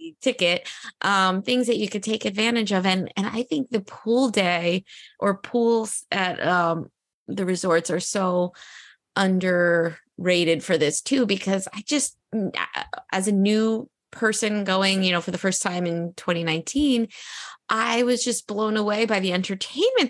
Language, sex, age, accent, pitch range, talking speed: English, female, 20-39, American, 190-255 Hz, 155 wpm